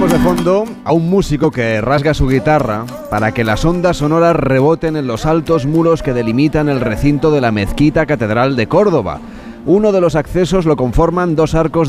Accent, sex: Spanish, male